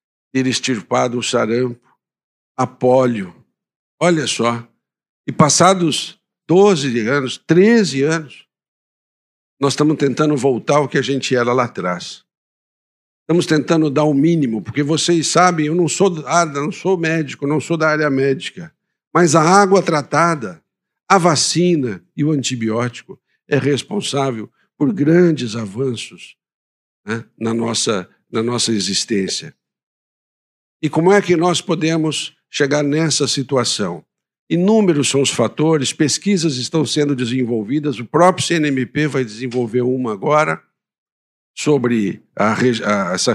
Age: 60-79